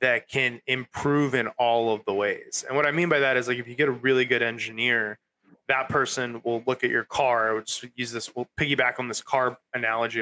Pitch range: 125-165 Hz